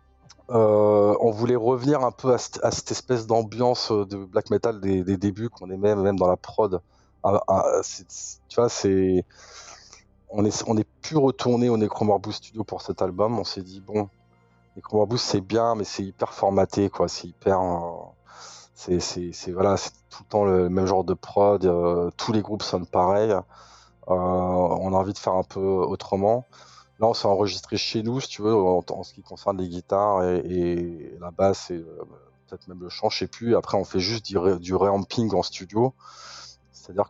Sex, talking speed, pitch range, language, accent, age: male, 200 wpm, 90-110 Hz, French, French, 20-39